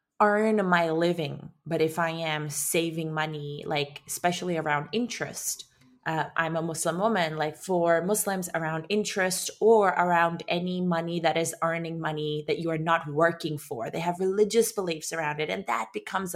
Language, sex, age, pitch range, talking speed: English, female, 20-39, 160-190 Hz, 170 wpm